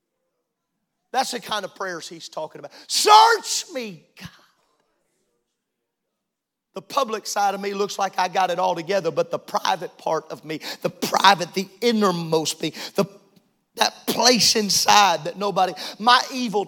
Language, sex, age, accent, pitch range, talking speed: English, male, 40-59, American, 195-270 Hz, 150 wpm